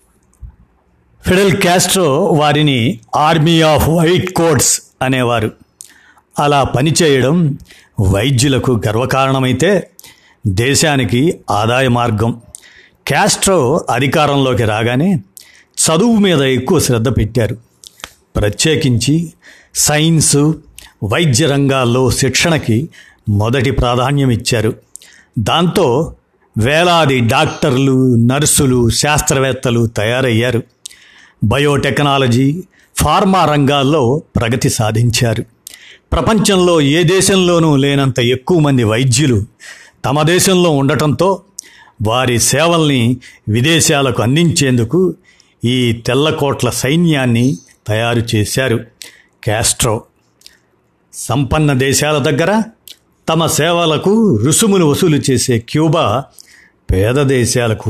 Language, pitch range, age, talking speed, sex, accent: Telugu, 120-155 Hz, 50-69, 75 wpm, male, native